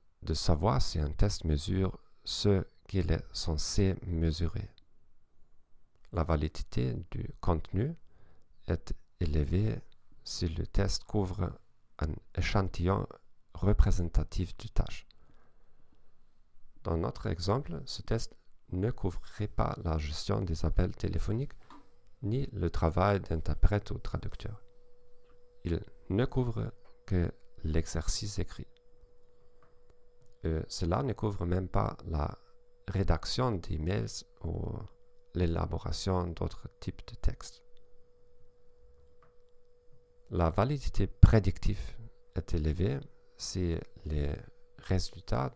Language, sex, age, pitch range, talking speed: French, male, 50-69, 85-115 Hz, 95 wpm